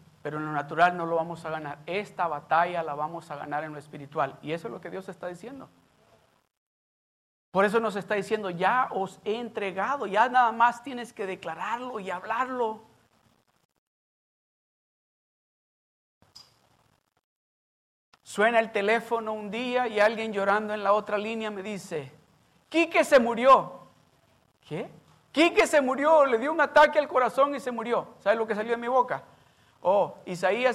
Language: Spanish